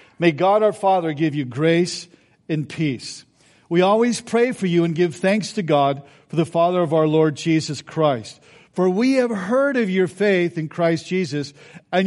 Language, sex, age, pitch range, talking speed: English, male, 50-69, 155-200 Hz, 190 wpm